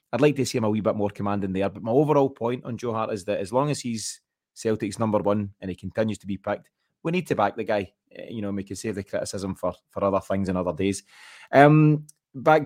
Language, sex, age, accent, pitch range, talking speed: English, male, 20-39, British, 105-130 Hz, 260 wpm